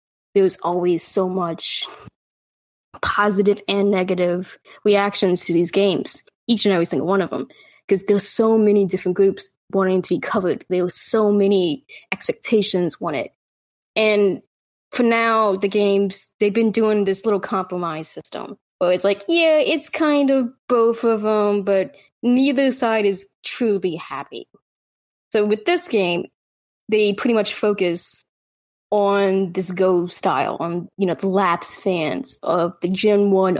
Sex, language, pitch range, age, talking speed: female, English, 185-225 Hz, 10-29, 150 wpm